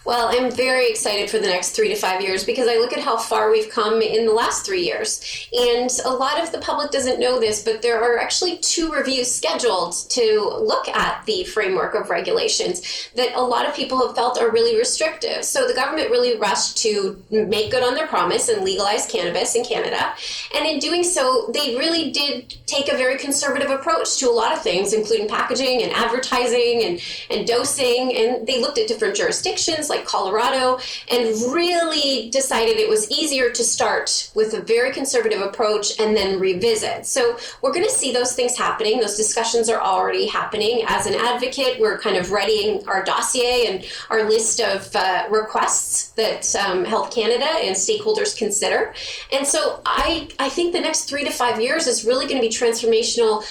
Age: 20-39